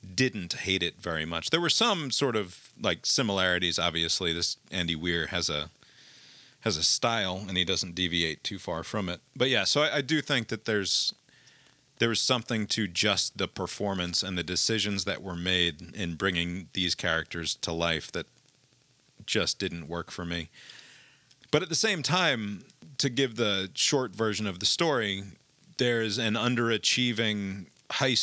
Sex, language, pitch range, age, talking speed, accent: male, English, 90-110 Hz, 30-49, 170 wpm, American